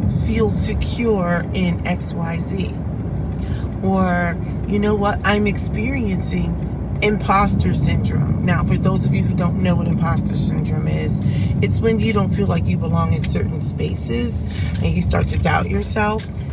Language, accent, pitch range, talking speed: English, American, 85-100 Hz, 150 wpm